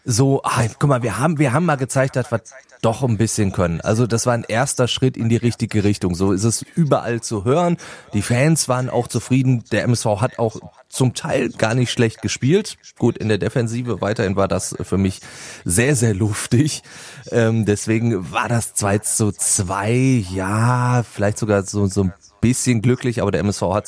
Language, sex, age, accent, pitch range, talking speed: German, male, 30-49, German, 105-130 Hz, 195 wpm